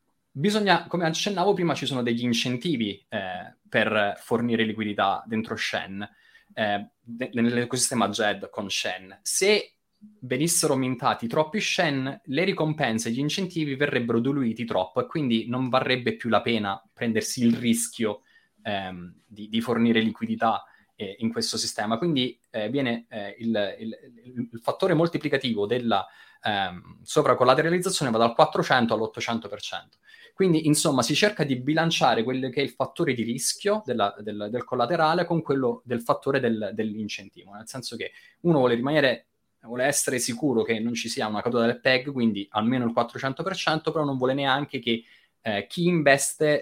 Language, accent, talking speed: Italian, native, 155 wpm